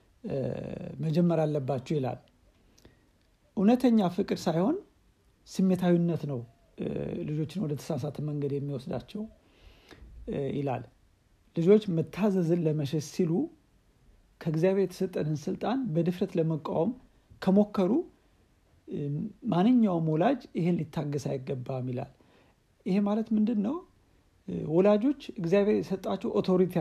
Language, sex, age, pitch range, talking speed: Amharic, male, 60-79, 150-205 Hz, 85 wpm